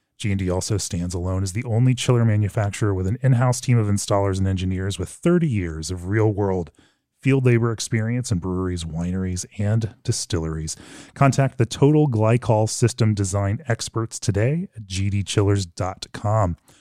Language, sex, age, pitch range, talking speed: English, male, 30-49, 95-125 Hz, 150 wpm